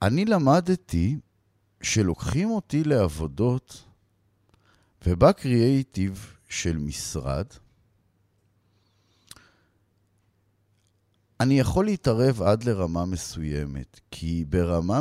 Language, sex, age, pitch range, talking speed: Hebrew, male, 50-69, 95-140 Hz, 65 wpm